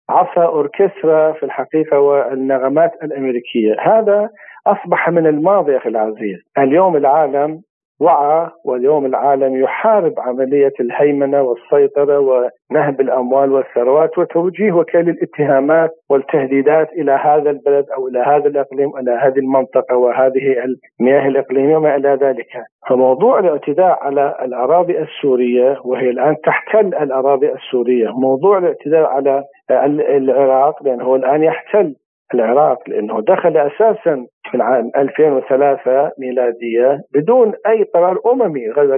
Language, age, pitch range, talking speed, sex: Arabic, 50-69, 130-160 Hz, 120 wpm, male